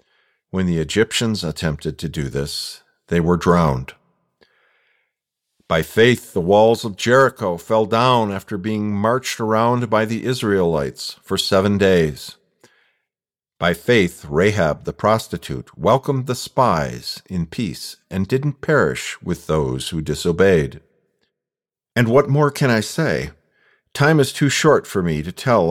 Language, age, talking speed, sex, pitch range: English, 50-69, 140 wpm, male, 90-120 Hz